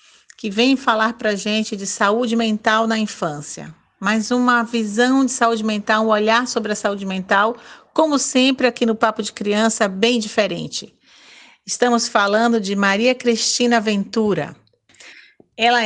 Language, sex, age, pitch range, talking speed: Portuguese, female, 50-69, 205-235 Hz, 150 wpm